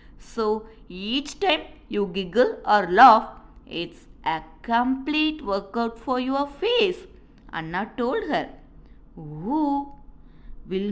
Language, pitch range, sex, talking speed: Tamil, 200-280 Hz, female, 105 wpm